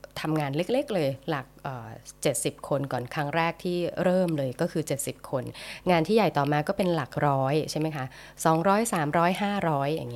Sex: female